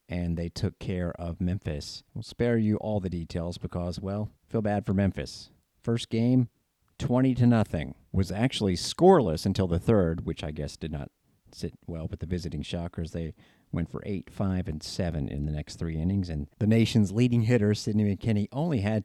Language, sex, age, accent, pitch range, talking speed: English, male, 40-59, American, 85-115 Hz, 190 wpm